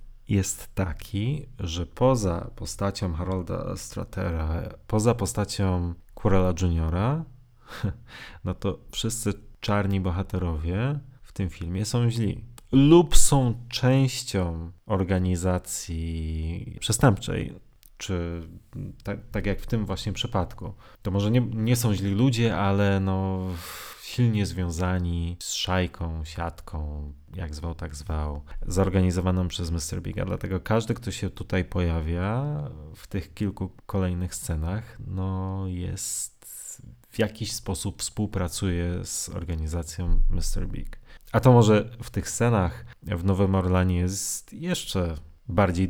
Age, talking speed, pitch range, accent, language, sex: 30-49, 115 wpm, 90-110 Hz, native, Polish, male